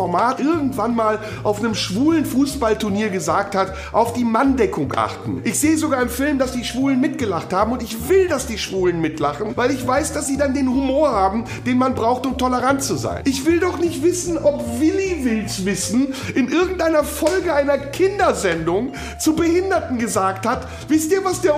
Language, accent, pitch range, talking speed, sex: German, German, 230-325 Hz, 185 wpm, male